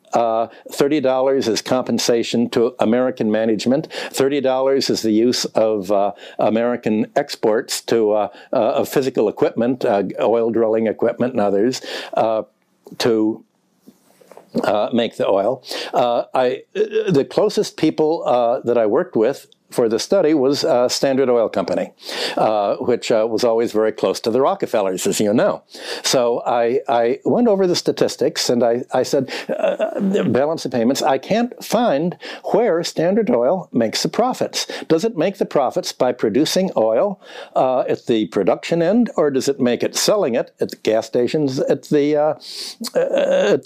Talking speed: 155 wpm